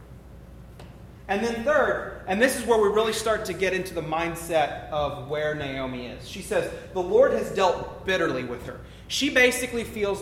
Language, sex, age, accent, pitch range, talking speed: English, male, 30-49, American, 155-225 Hz, 180 wpm